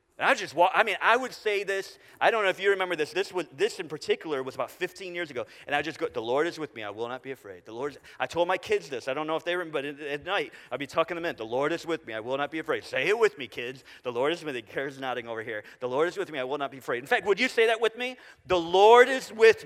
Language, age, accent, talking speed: English, 40-59, American, 335 wpm